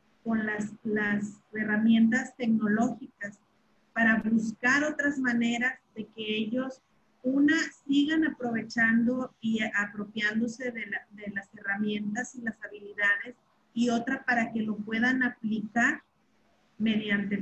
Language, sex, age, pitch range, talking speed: Spanish, female, 40-59, 210-235 Hz, 115 wpm